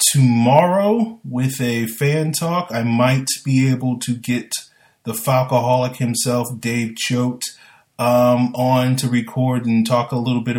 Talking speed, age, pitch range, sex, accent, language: 135 wpm, 30-49, 110-130 Hz, male, American, English